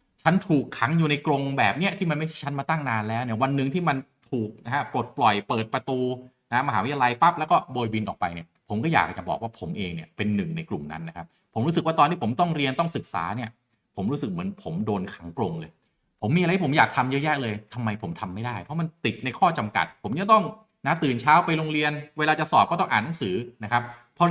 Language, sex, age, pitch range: Thai, male, 30-49, 115-155 Hz